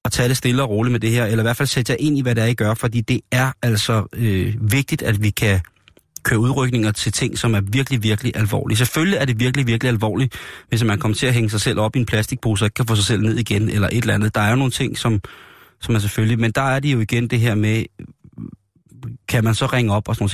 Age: 30-49